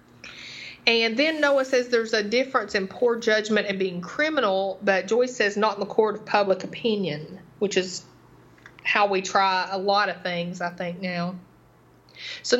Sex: female